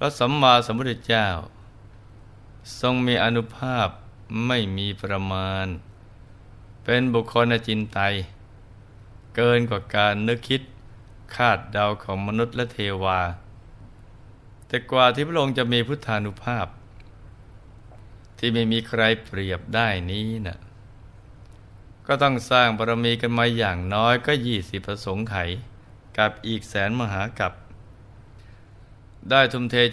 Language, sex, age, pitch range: Thai, male, 20-39, 100-115 Hz